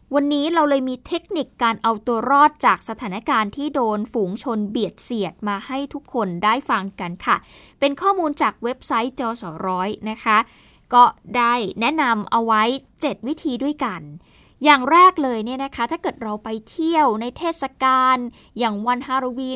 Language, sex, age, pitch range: Thai, female, 20-39, 220-285 Hz